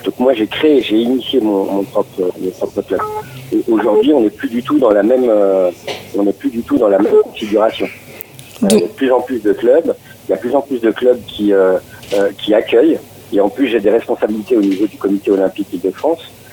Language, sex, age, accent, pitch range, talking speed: French, male, 50-69, French, 100-135 Hz, 220 wpm